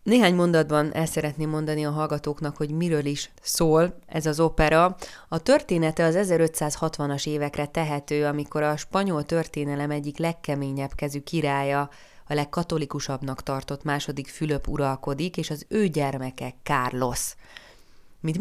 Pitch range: 140-160 Hz